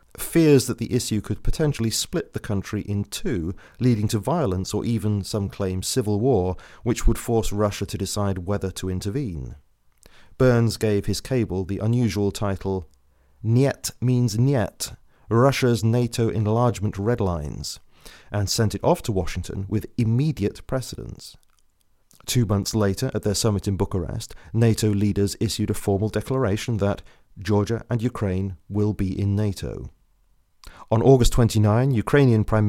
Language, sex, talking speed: English, male, 145 wpm